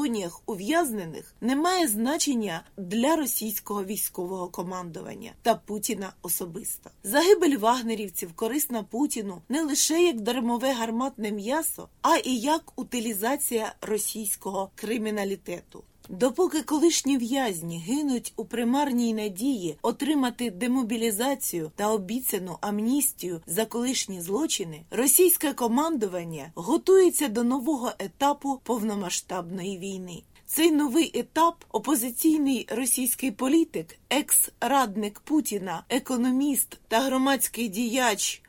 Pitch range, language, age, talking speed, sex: 210-270 Hz, Ukrainian, 20-39, 95 wpm, female